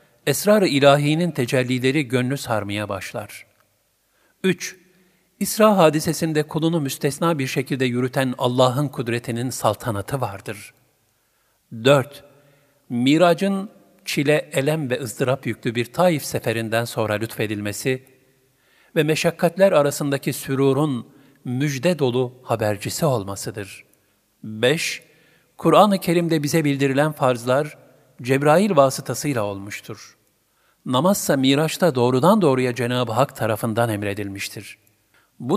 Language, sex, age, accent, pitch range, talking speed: Turkish, male, 50-69, native, 115-155 Hz, 95 wpm